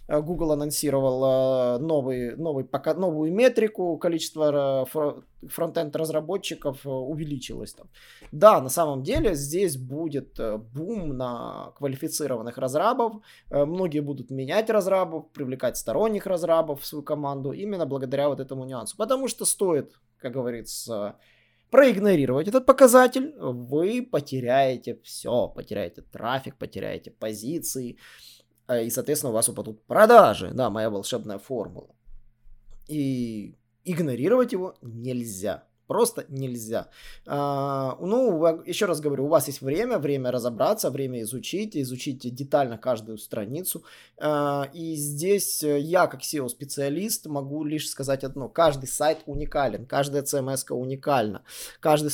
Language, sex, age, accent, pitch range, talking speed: Russian, male, 20-39, native, 125-170 Hz, 115 wpm